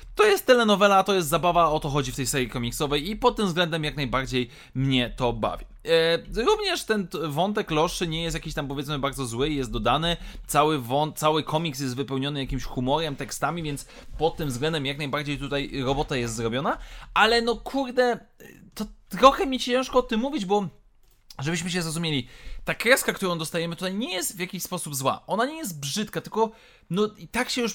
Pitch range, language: 145-190 Hz, Polish